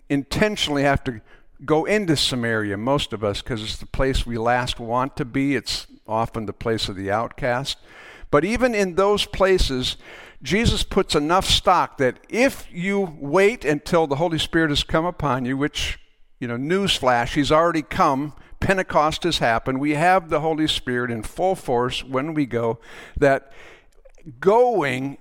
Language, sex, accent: English, male, American